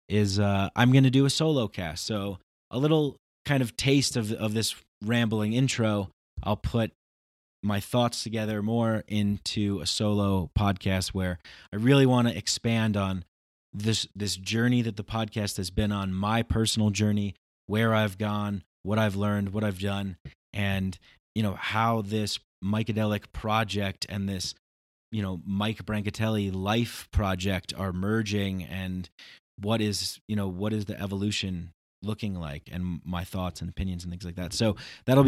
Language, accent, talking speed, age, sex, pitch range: English, American, 165 wpm, 30-49, male, 90-110 Hz